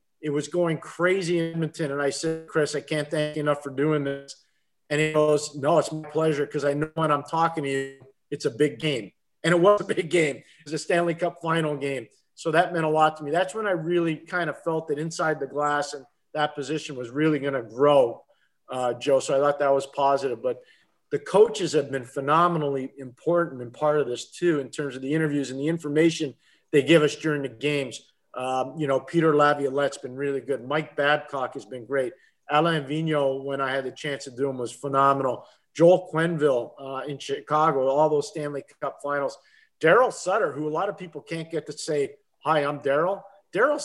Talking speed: 220 wpm